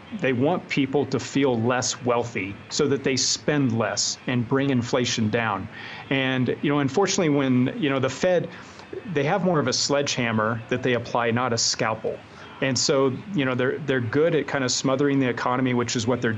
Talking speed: 200 wpm